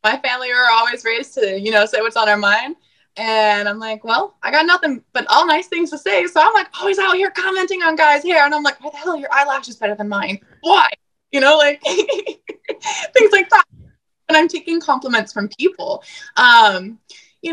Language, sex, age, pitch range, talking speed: English, female, 20-39, 225-320 Hz, 210 wpm